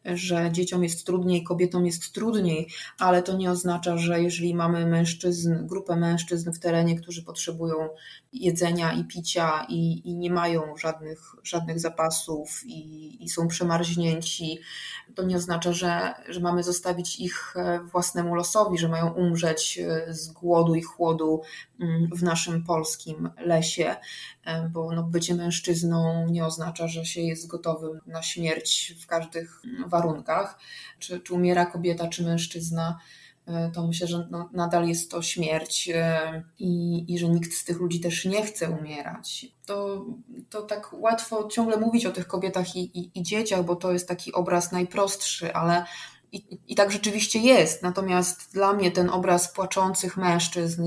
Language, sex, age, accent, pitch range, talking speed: Polish, female, 20-39, native, 165-180 Hz, 150 wpm